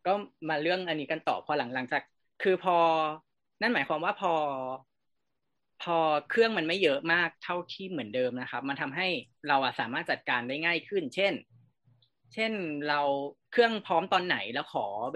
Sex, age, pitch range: female, 20-39, 135-200 Hz